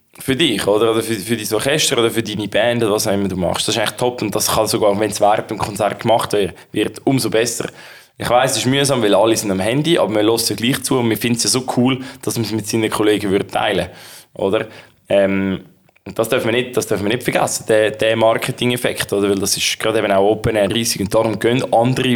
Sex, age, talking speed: male, 20-39, 250 wpm